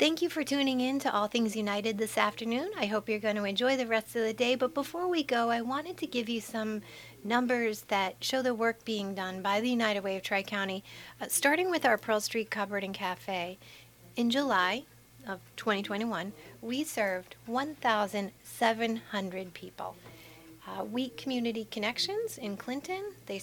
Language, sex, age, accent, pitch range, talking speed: English, female, 40-59, American, 195-245 Hz, 175 wpm